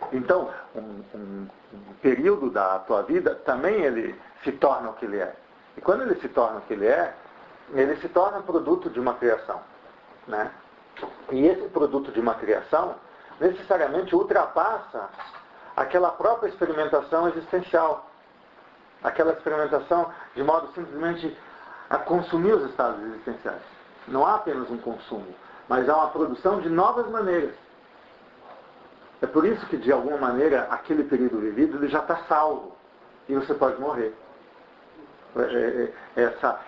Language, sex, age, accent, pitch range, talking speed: English, male, 50-69, Brazilian, 135-185 Hz, 140 wpm